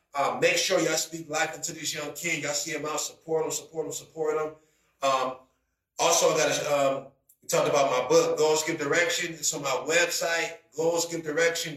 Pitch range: 160-220 Hz